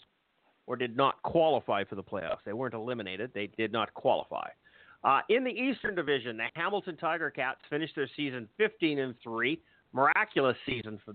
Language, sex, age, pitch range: English, male, 50-69, 130-170 Hz